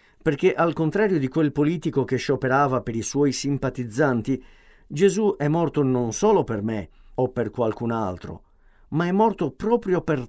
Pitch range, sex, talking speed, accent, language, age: 120-170 Hz, male, 165 wpm, native, Italian, 50-69